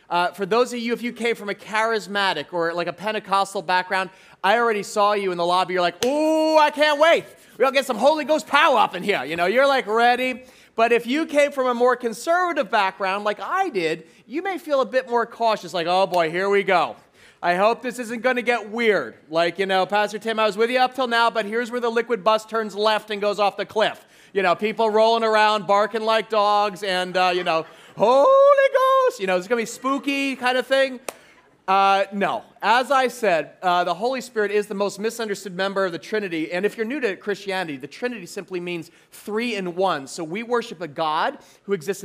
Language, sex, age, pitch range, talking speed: English, male, 30-49, 190-250 Hz, 235 wpm